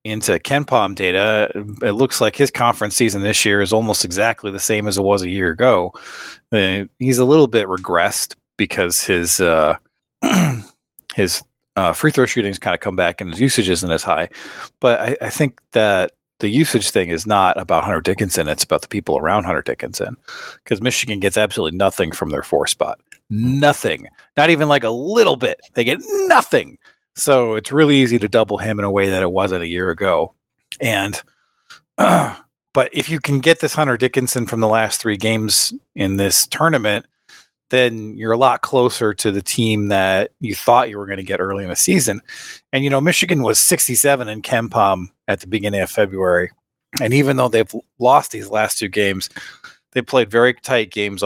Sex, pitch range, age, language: male, 100-130 Hz, 40-59, English